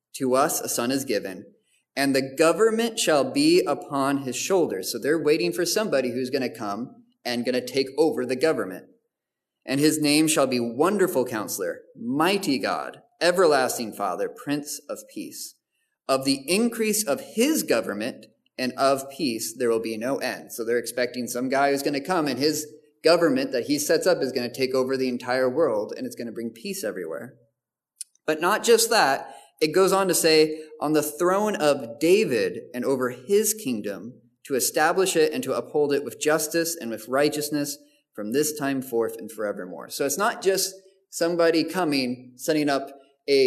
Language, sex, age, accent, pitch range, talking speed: English, male, 30-49, American, 135-220 Hz, 180 wpm